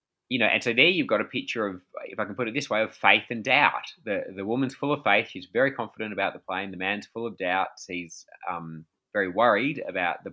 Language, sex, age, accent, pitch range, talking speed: English, male, 20-39, Australian, 90-115 Hz, 255 wpm